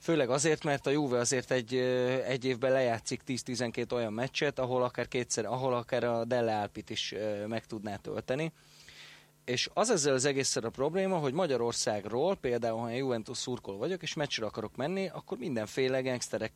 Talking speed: 165 wpm